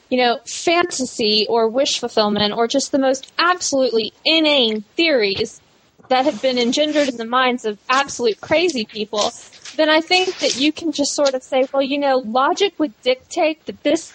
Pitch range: 235-295 Hz